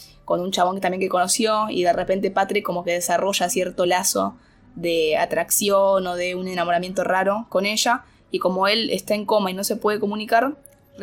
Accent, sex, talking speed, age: Argentinian, female, 190 wpm, 10-29